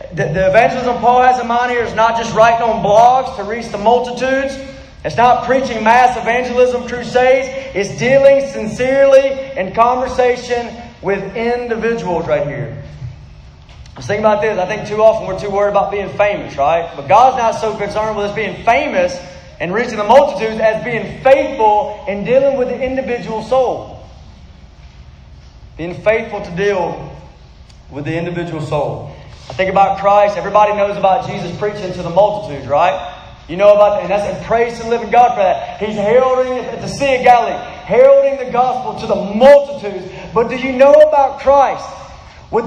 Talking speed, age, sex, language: 170 wpm, 30-49, male, English